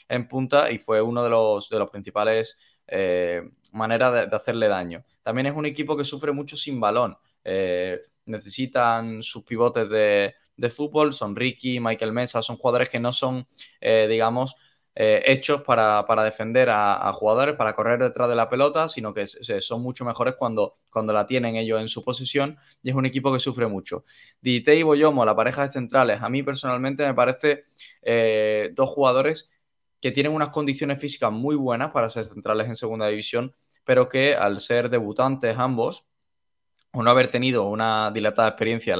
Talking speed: 185 wpm